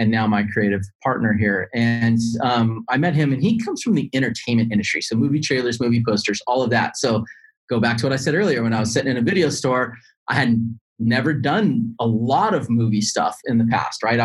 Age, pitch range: 30-49, 115-140 Hz